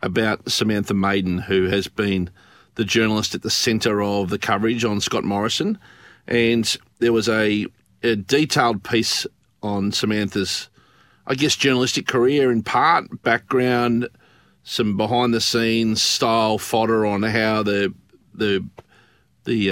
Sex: male